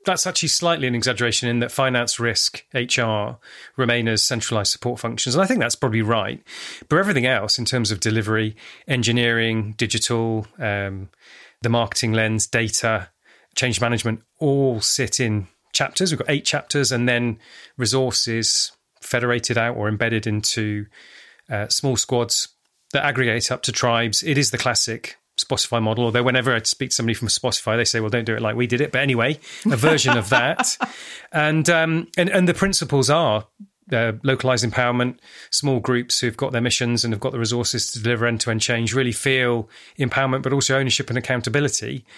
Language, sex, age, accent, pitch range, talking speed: English, male, 30-49, British, 115-135 Hz, 175 wpm